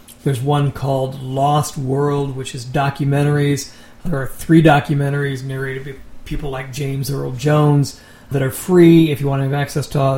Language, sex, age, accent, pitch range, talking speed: English, male, 40-59, American, 130-145 Hz, 170 wpm